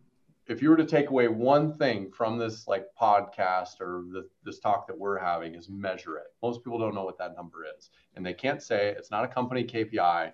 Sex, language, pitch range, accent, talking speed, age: male, English, 100-140 Hz, American, 220 wpm, 30-49